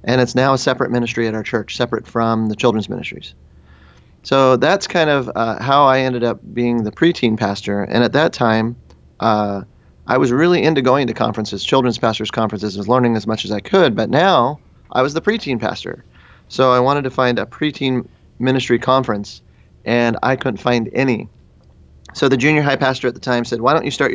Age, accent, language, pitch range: 30-49, American, English, 110-130 Hz